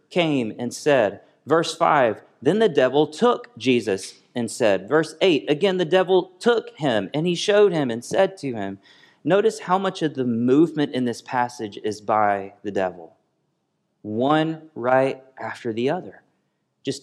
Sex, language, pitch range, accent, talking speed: male, English, 105-145 Hz, American, 160 wpm